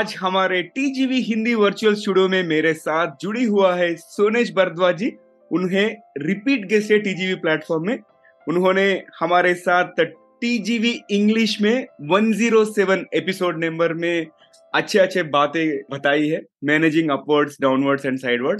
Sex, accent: male, native